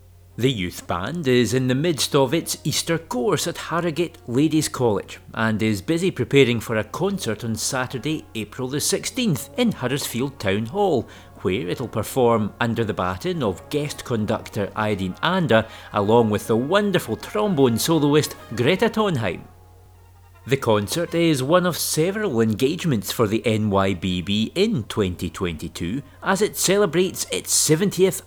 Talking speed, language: 140 wpm, English